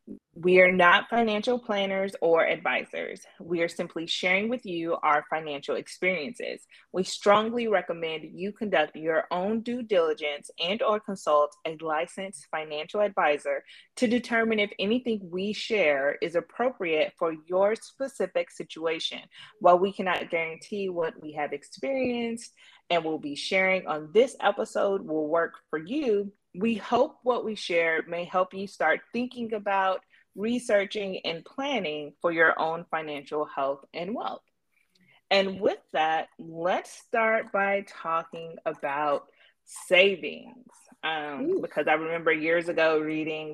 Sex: female